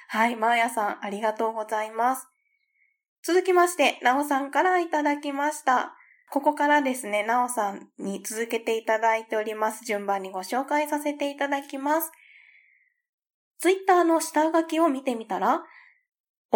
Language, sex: Japanese, female